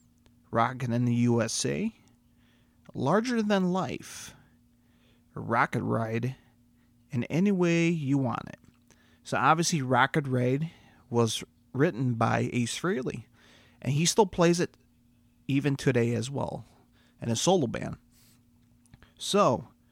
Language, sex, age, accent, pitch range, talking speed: English, male, 30-49, American, 120-145 Hz, 115 wpm